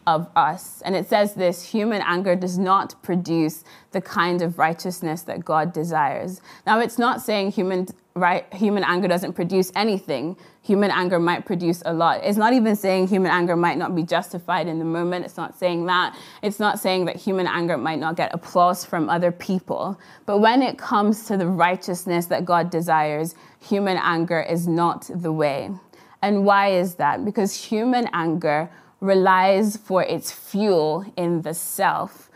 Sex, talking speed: female, 175 wpm